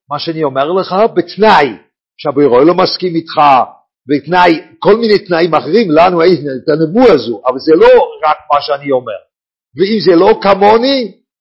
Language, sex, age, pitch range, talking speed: English, male, 50-69, 155-215 Hz, 165 wpm